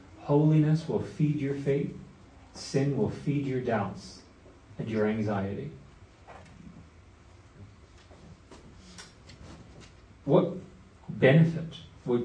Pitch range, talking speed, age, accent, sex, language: 95-130 Hz, 80 wpm, 40-59, American, male, English